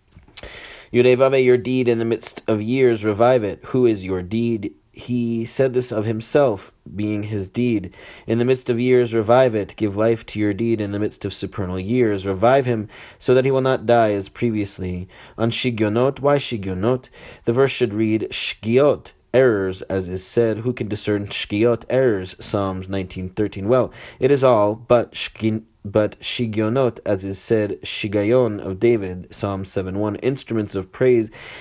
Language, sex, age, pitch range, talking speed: English, male, 30-49, 100-125 Hz, 170 wpm